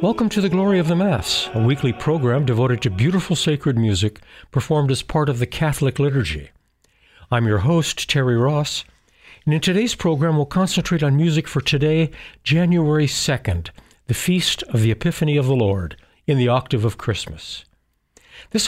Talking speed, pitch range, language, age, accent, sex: 170 wpm, 120-160 Hz, English, 60-79, American, male